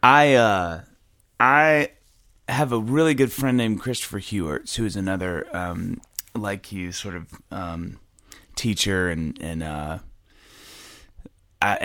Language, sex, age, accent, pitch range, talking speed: English, male, 30-49, American, 90-115 Hz, 125 wpm